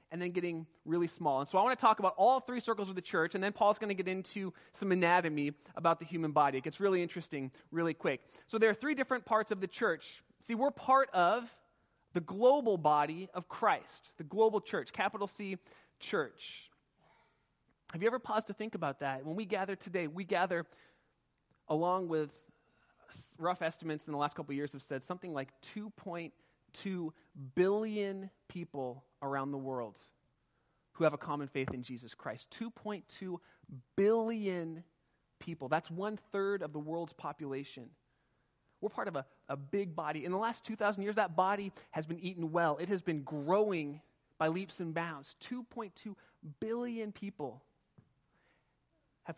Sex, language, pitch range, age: male, English, 150-200 Hz, 30-49